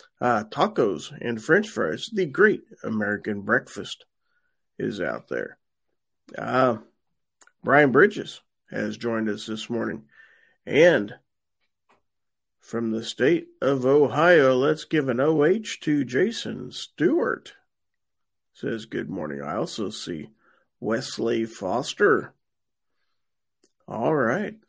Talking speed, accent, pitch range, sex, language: 105 wpm, American, 115-160 Hz, male, English